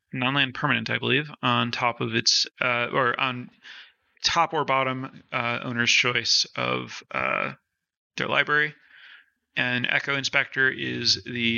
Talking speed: 140 wpm